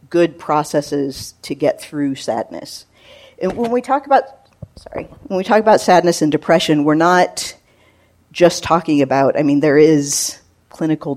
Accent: American